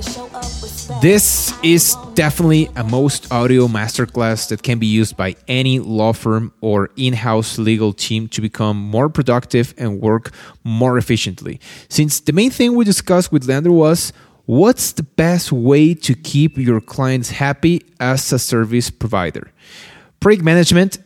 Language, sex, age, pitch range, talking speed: English, male, 30-49, 120-165 Hz, 145 wpm